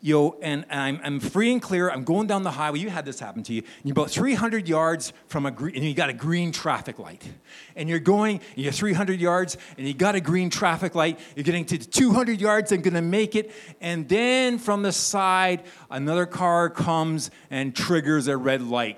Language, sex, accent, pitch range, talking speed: English, male, American, 155-210 Hz, 220 wpm